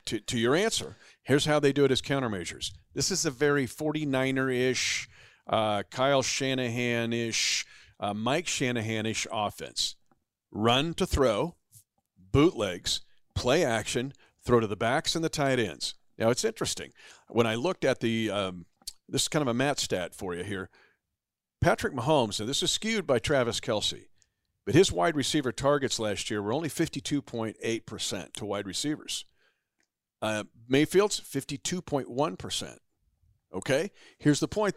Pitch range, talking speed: 110-145 Hz, 150 wpm